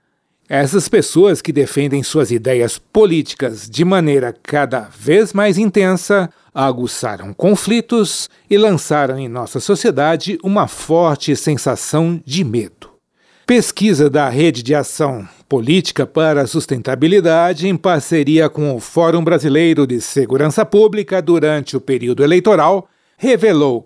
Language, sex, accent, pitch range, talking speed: Portuguese, male, Brazilian, 140-200 Hz, 120 wpm